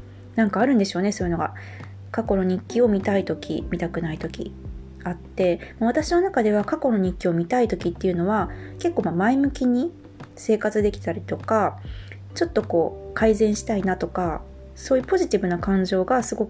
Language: Japanese